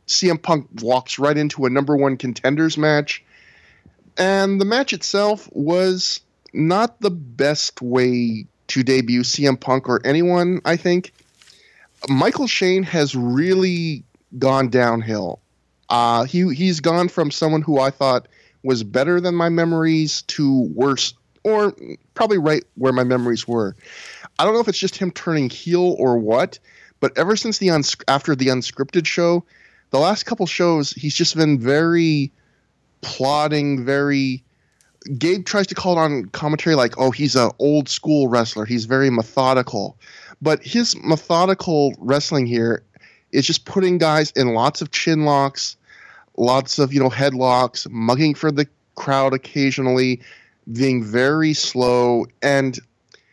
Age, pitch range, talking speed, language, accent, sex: 30-49, 130-170 Hz, 150 wpm, English, American, male